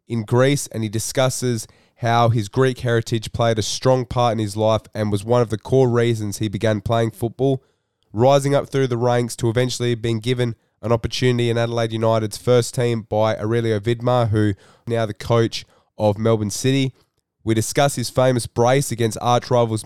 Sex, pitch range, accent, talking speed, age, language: male, 110-125 Hz, Australian, 180 wpm, 20-39, English